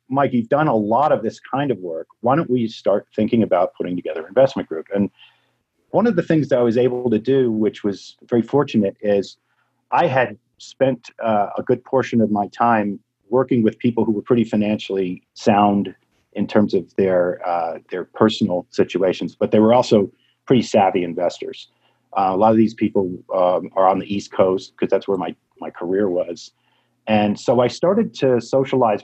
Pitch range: 100-125 Hz